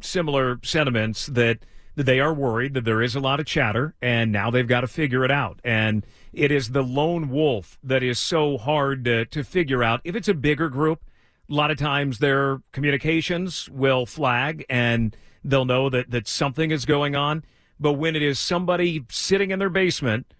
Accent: American